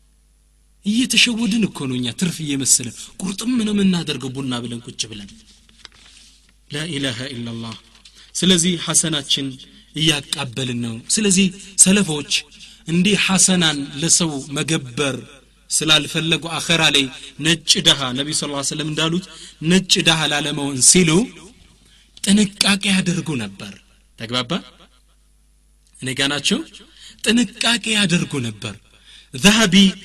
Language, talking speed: Amharic, 100 wpm